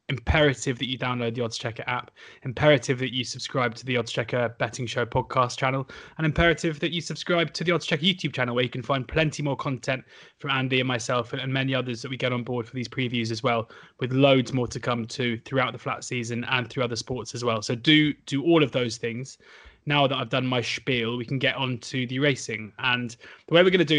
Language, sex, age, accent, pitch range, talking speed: English, male, 20-39, British, 125-145 Hz, 245 wpm